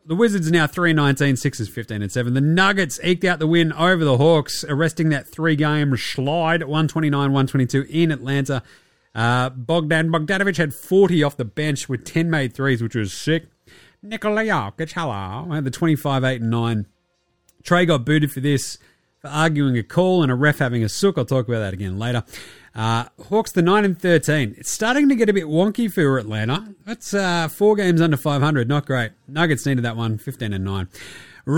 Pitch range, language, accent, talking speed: 135-180 Hz, English, Australian, 175 wpm